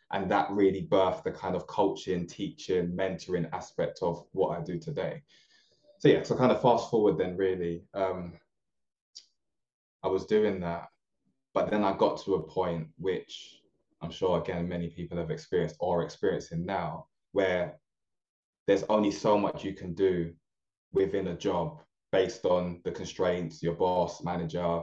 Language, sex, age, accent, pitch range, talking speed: English, male, 20-39, British, 85-95 Hz, 160 wpm